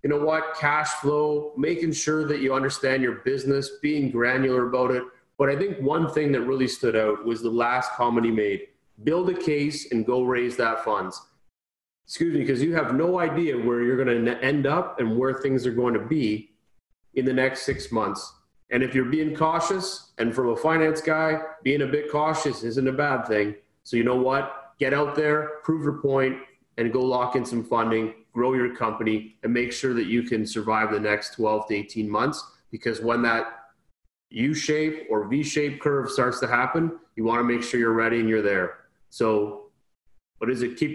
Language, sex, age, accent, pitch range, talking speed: English, male, 30-49, American, 115-145 Hz, 205 wpm